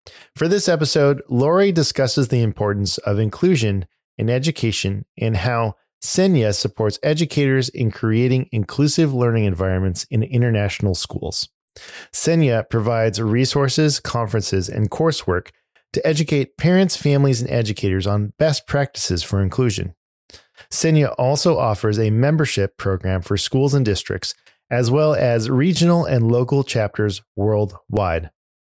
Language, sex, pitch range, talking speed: English, male, 105-145 Hz, 125 wpm